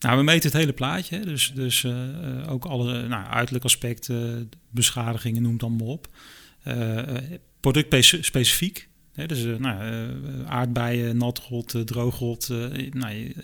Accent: Dutch